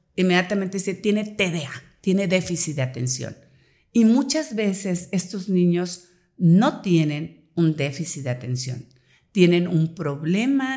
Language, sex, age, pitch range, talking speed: Spanish, female, 50-69, 150-185 Hz, 125 wpm